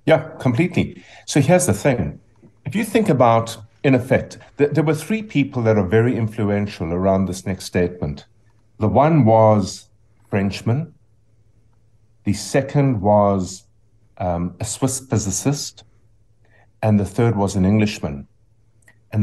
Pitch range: 105-130 Hz